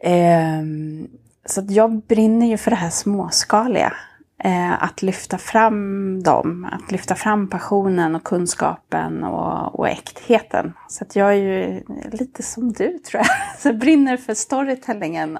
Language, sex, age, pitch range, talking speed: English, female, 30-49, 185-255 Hz, 145 wpm